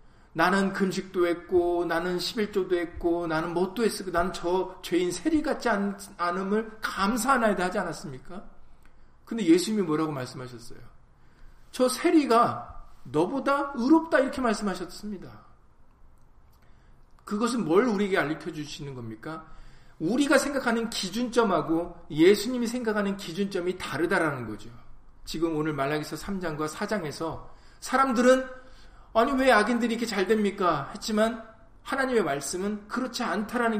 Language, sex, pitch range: Korean, male, 155-225 Hz